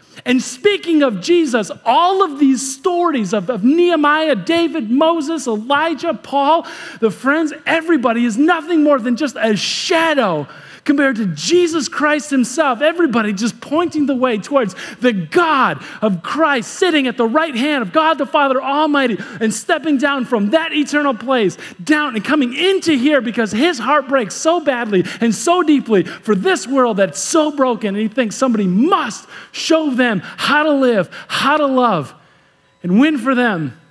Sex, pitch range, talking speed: male, 210-290 Hz, 165 wpm